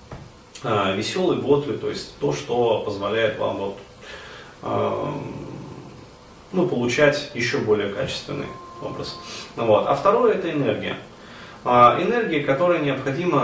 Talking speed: 105 wpm